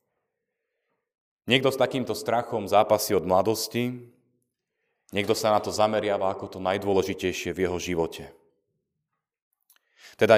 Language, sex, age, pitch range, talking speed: Slovak, male, 30-49, 95-125 Hz, 110 wpm